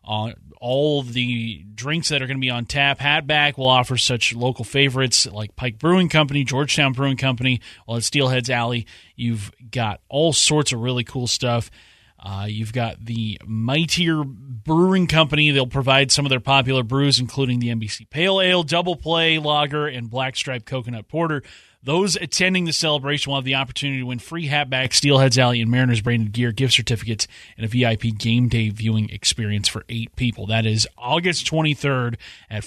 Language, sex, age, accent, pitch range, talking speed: English, male, 30-49, American, 120-155 Hz, 180 wpm